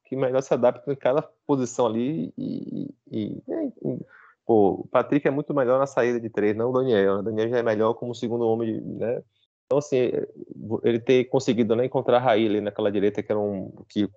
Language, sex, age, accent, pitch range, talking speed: Portuguese, male, 20-39, Brazilian, 105-150 Hz, 215 wpm